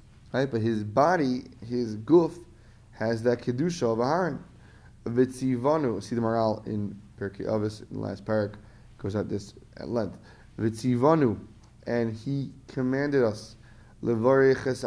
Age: 20-39